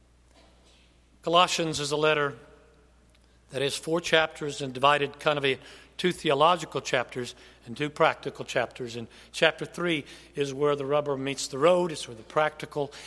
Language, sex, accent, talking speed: English, male, American, 160 wpm